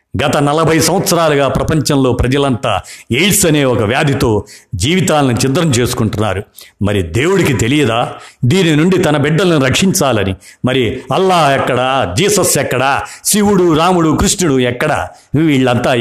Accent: native